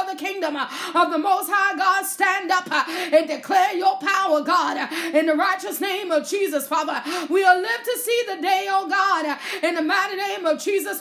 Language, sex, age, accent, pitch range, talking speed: English, female, 30-49, American, 335-395 Hz, 195 wpm